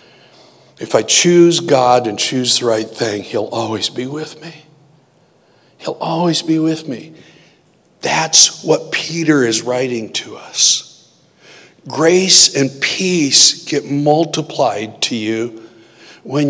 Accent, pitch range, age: American, 115-155 Hz, 60-79